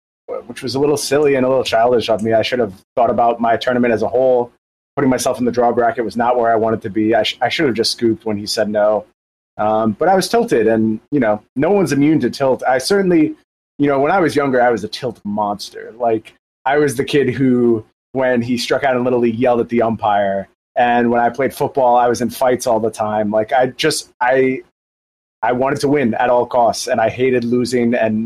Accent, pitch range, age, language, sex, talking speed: American, 110-130 Hz, 30-49, English, male, 245 wpm